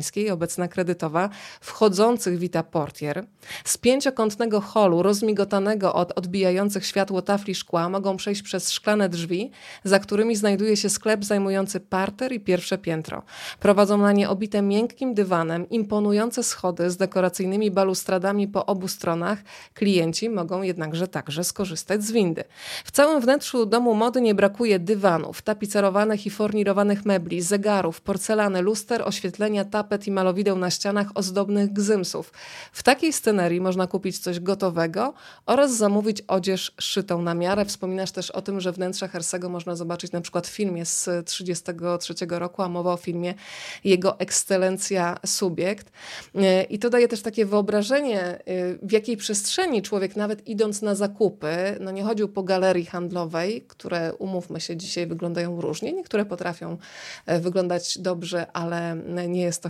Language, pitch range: Polish, 180-210 Hz